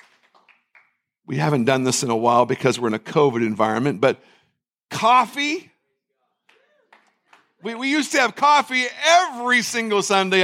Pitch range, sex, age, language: 195-260 Hz, male, 50-69, English